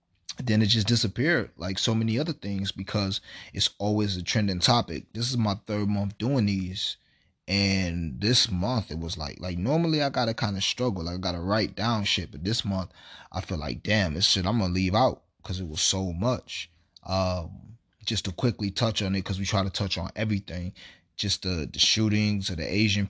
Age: 20-39